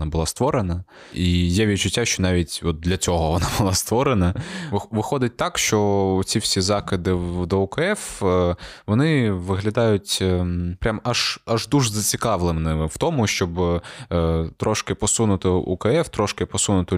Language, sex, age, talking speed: Ukrainian, male, 20-39, 125 wpm